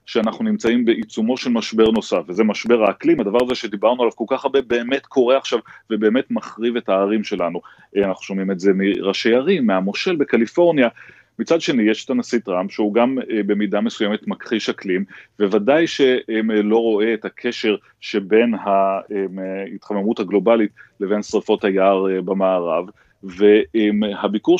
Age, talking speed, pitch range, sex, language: 30-49, 140 wpm, 100-120 Hz, male, Hebrew